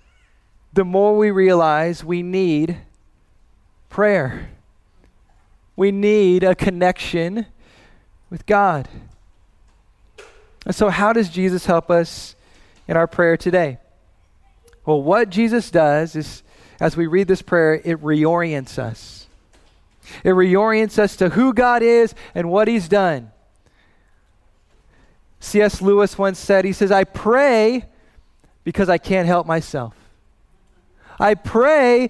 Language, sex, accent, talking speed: English, male, American, 120 wpm